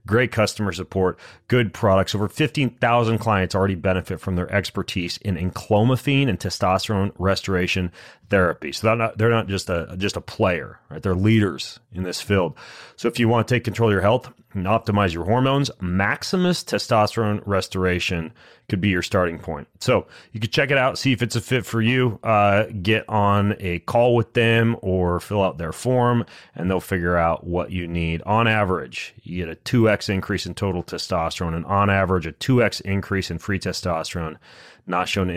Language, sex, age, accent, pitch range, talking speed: English, male, 30-49, American, 90-115 Hz, 190 wpm